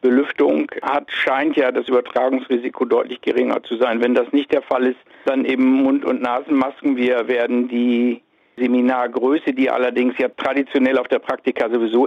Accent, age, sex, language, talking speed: German, 60-79, male, German, 165 wpm